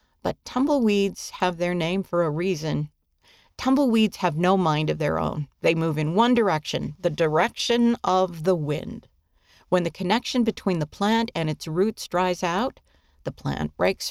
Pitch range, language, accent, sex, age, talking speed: 150-200 Hz, English, American, female, 50-69, 165 wpm